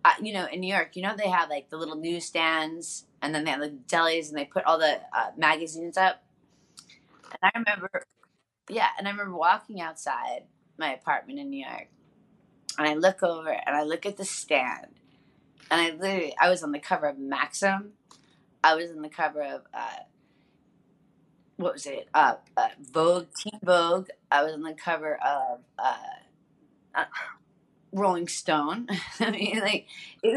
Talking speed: 180 wpm